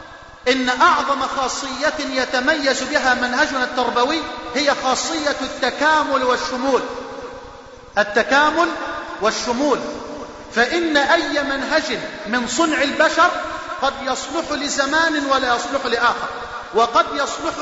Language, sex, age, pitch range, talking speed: Arabic, male, 40-59, 245-295 Hz, 90 wpm